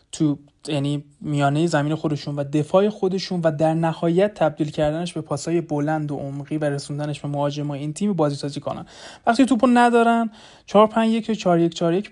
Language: Persian